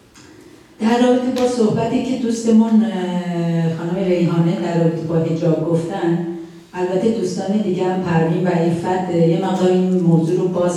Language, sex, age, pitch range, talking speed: Persian, female, 40-59, 170-205 Hz, 130 wpm